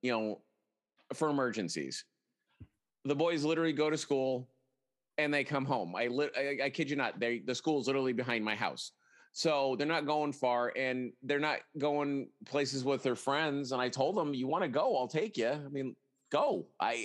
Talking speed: 195 wpm